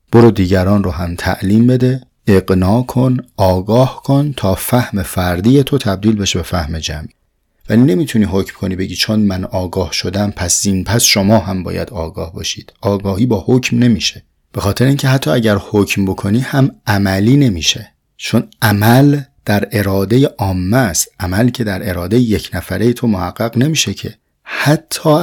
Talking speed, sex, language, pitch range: 160 wpm, male, Persian, 95-120 Hz